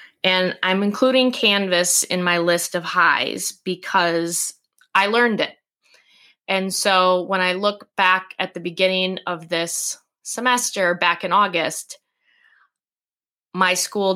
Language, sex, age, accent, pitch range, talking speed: English, female, 20-39, American, 170-200 Hz, 125 wpm